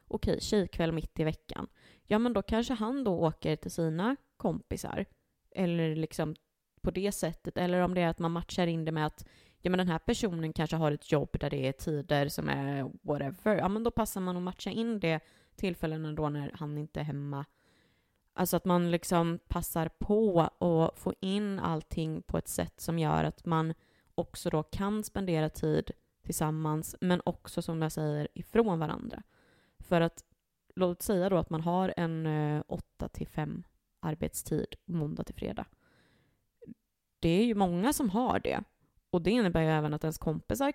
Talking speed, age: 180 wpm, 20-39